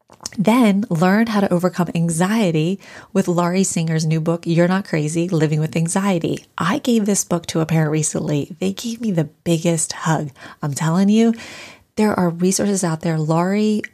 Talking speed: 170 wpm